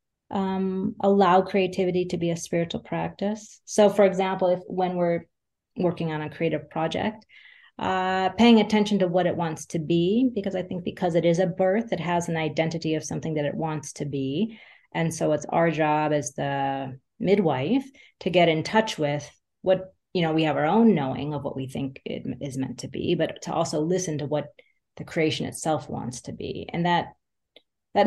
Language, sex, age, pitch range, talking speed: English, female, 30-49, 150-190 Hz, 195 wpm